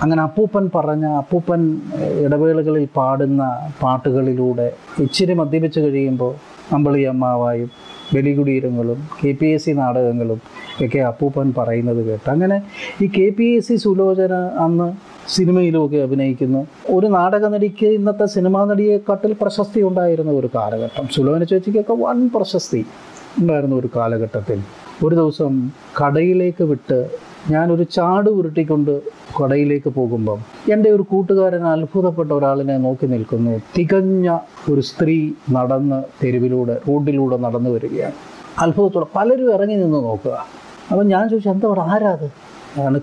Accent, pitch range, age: native, 135-190 Hz, 30-49